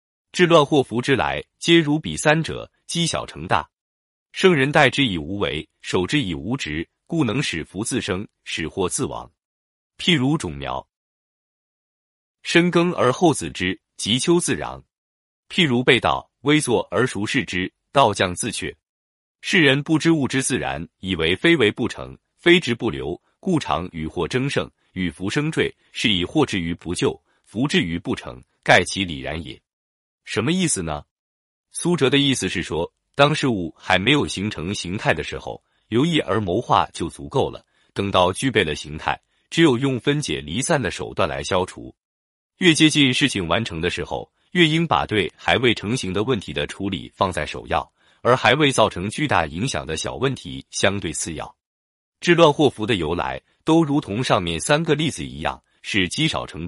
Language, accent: Chinese, native